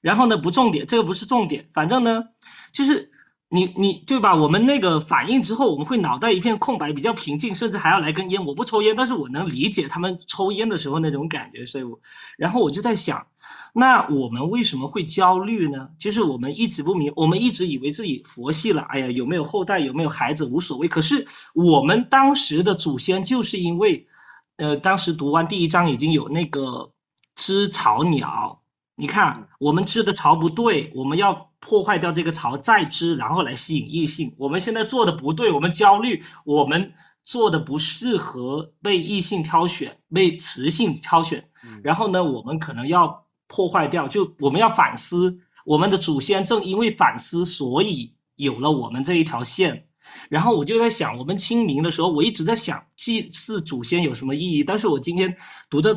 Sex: male